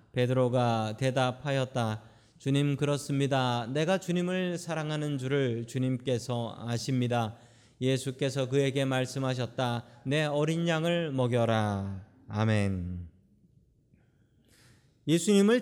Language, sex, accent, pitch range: Korean, male, native, 120-185 Hz